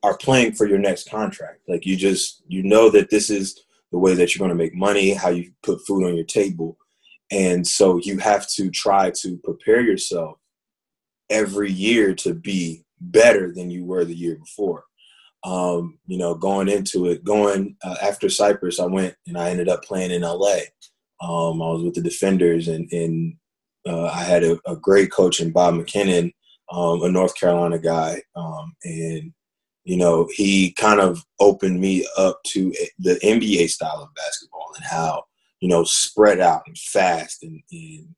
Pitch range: 85-100 Hz